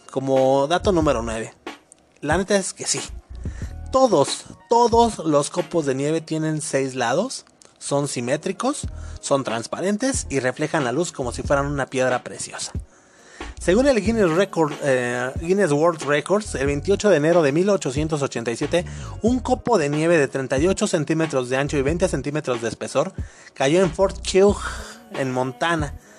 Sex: male